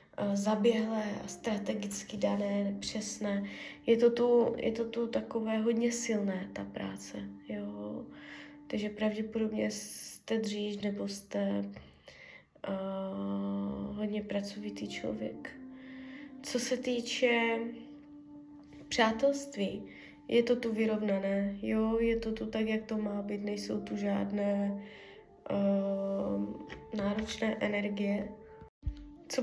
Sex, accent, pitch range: female, native, 205-250 Hz